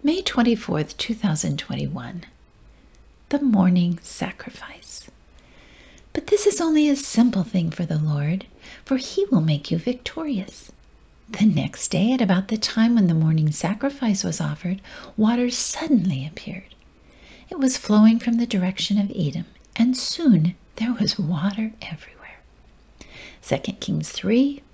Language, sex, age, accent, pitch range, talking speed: English, female, 60-79, American, 175-235 Hz, 135 wpm